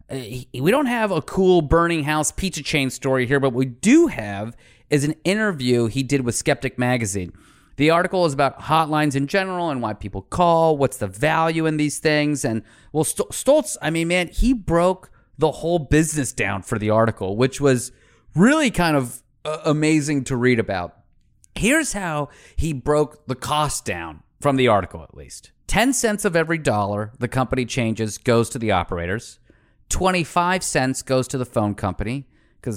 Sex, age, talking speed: male, 30-49, 180 wpm